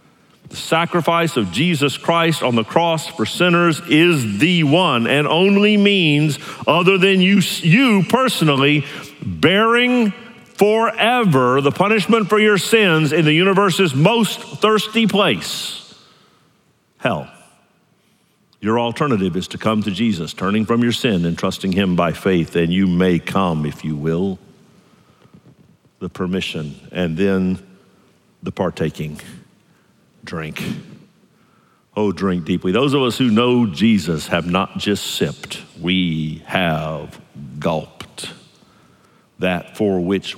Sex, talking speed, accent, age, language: male, 125 wpm, American, 50-69, English